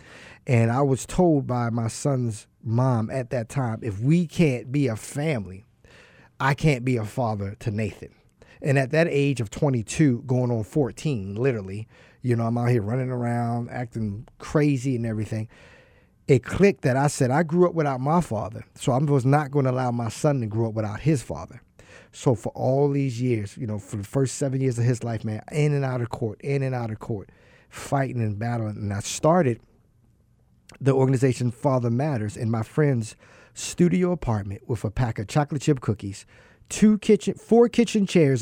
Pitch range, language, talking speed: 115-145 Hz, English, 195 wpm